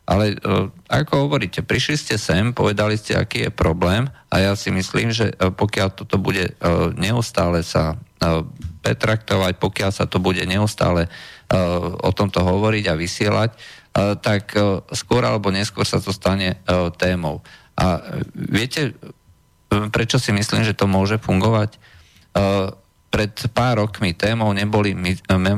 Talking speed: 125 wpm